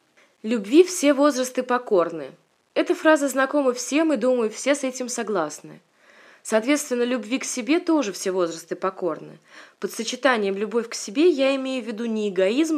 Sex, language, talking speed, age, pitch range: female, Russian, 155 wpm, 20-39, 215-275 Hz